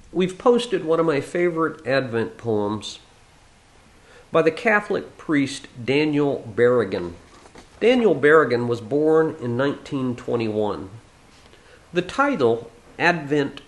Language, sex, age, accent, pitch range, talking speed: English, male, 50-69, American, 105-150 Hz, 100 wpm